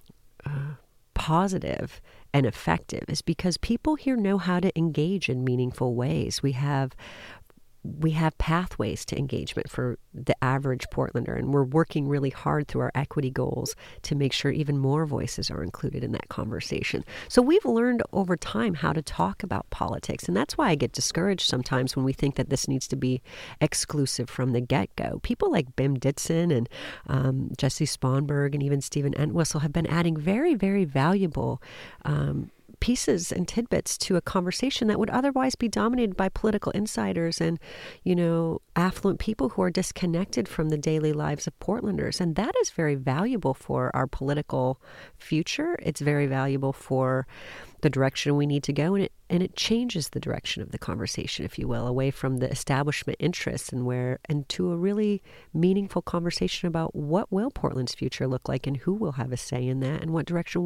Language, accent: English, American